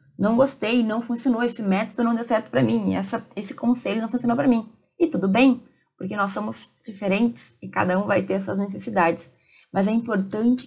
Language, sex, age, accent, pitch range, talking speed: Portuguese, female, 20-39, Brazilian, 190-240 Hz, 200 wpm